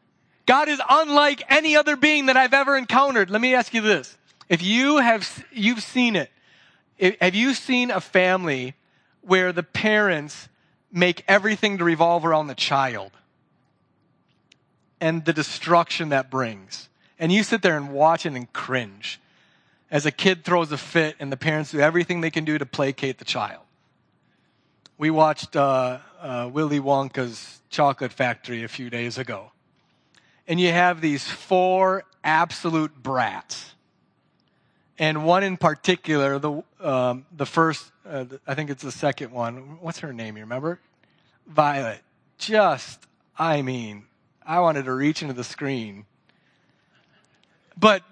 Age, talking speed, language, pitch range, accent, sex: 40-59, 150 wpm, English, 140-190 Hz, American, male